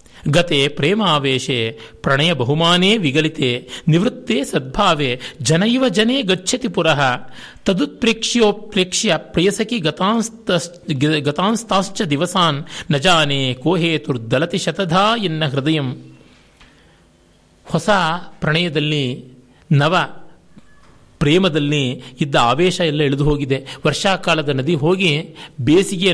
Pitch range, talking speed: 145-210 Hz, 60 wpm